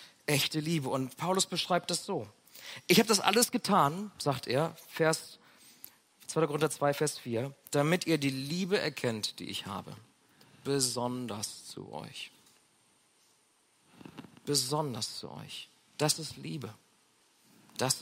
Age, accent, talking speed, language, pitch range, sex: 40-59, German, 125 wpm, German, 125-170 Hz, male